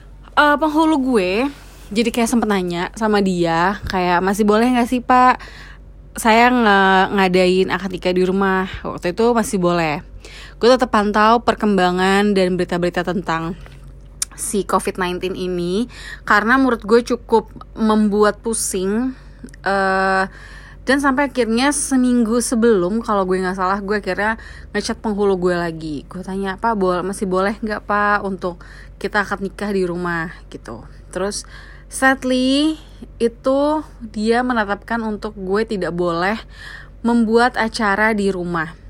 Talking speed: 135 wpm